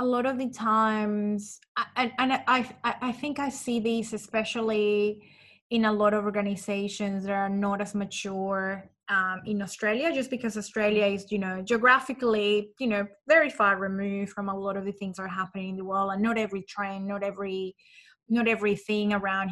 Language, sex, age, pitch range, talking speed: English, female, 20-39, 200-230 Hz, 190 wpm